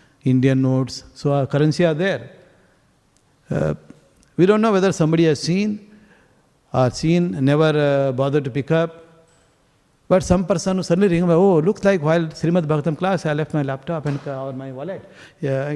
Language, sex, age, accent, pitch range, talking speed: English, male, 60-79, Indian, 140-175 Hz, 170 wpm